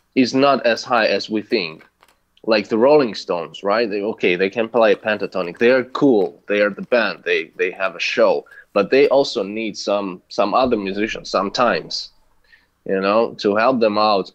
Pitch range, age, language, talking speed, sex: 95-125 Hz, 20-39, English, 190 wpm, male